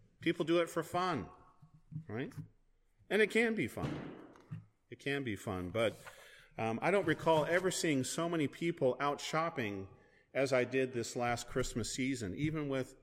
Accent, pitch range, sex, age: American, 115-155 Hz, male, 40-59